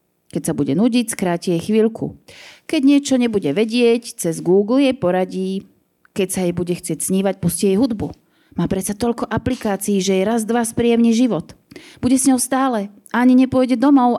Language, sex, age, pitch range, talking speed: Slovak, female, 30-49, 170-225 Hz, 180 wpm